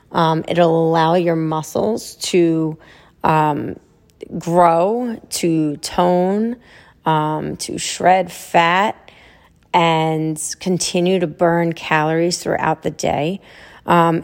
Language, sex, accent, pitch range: English, female, American, 165-195 Hz